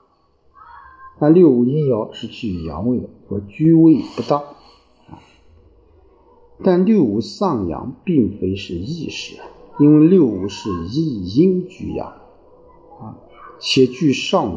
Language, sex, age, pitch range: Chinese, male, 50-69, 105-150 Hz